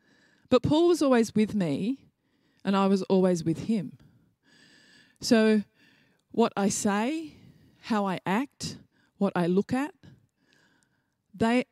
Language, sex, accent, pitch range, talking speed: English, female, Australian, 175-225 Hz, 125 wpm